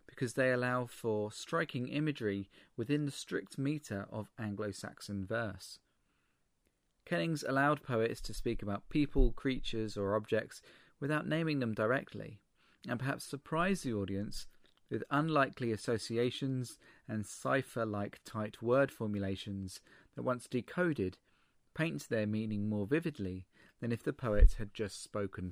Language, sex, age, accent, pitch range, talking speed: English, male, 40-59, British, 100-130 Hz, 130 wpm